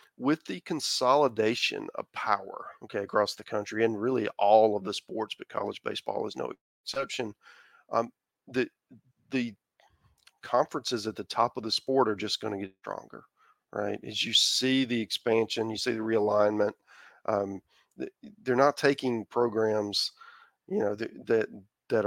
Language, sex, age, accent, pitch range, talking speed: English, male, 40-59, American, 105-120 Hz, 155 wpm